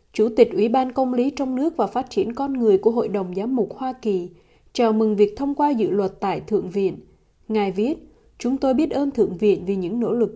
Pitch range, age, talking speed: 205-265 Hz, 20-39, 245 wpm